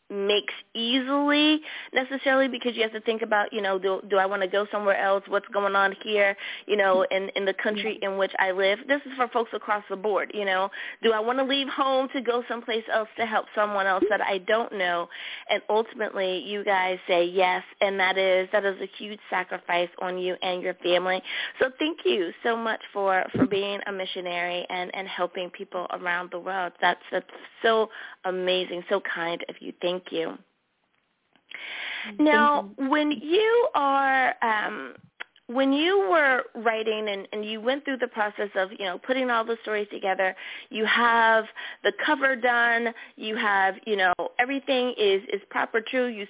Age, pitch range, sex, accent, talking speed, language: 20-39, 190-245 Hz, female, American, 190 wpm, English